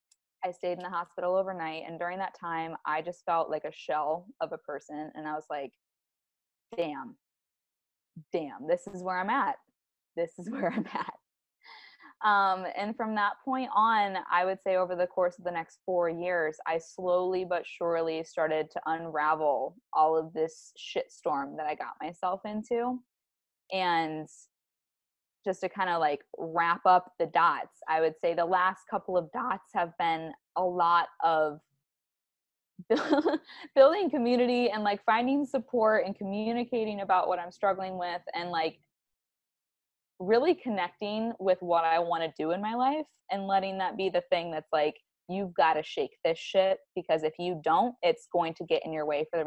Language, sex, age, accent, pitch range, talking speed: English, female, 20-39, American, 160-205 Hz, 175 wpm